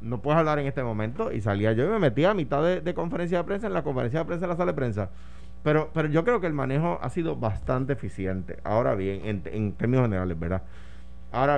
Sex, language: male, Spanish